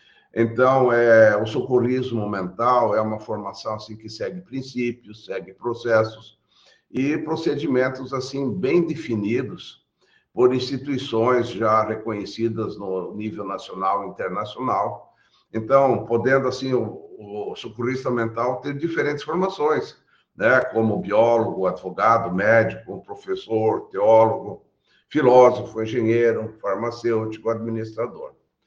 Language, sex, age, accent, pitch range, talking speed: Portuguese, male, 60-79, Brazilian, 110-130 Hz, 105 wpm